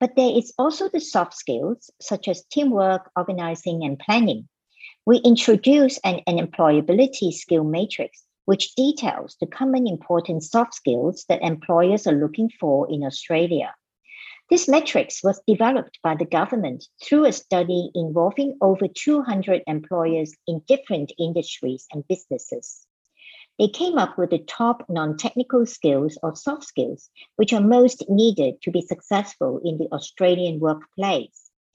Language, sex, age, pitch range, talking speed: English, male, 60-79, 165-245 Hz, 140 wpm